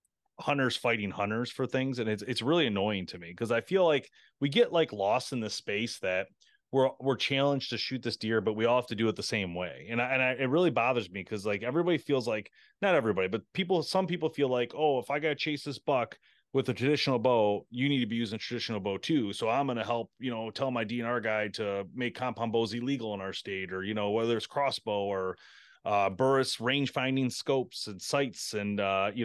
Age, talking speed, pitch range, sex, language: 30-49, 240 wpm, 115-145 Hz, male, English